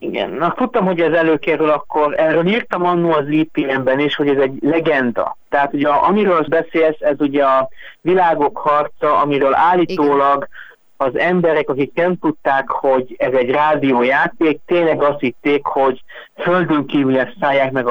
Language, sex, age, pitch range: Hungarian, male, 50-69, 135-165 Hz